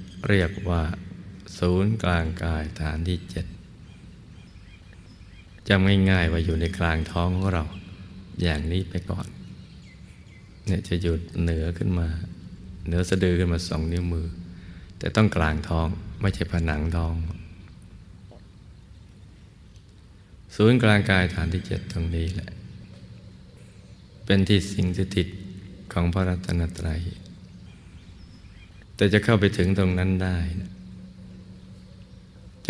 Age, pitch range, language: 20-39, 85-95 Hz, Thai